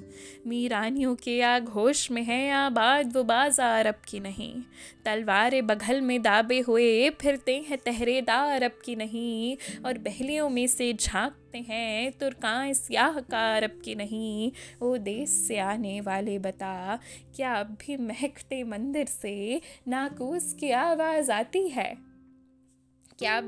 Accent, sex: native, female